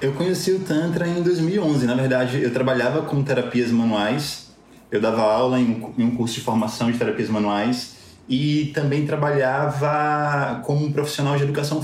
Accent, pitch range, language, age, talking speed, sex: Brazilian, 130-185 Hz, Portuguese, 20-39, 160 wpm, male